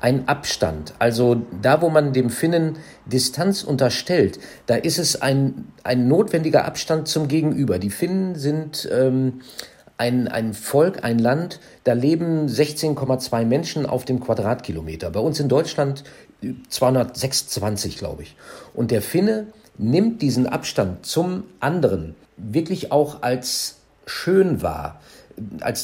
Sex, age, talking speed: male, 50-69, 130 wpm